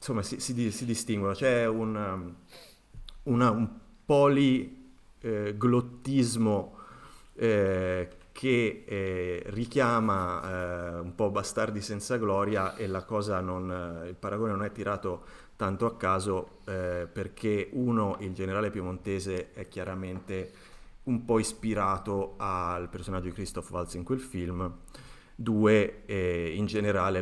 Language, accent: Italian, native